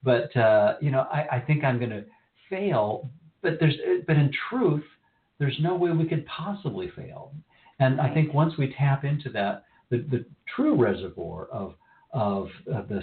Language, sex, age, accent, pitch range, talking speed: English, male, 50-69, American, 105-145 Hz, 180 wpm